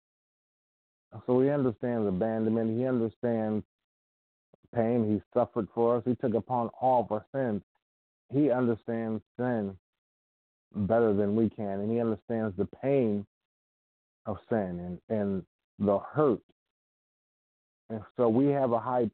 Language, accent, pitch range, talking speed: English, American, 100-115 Hz, 130 wpm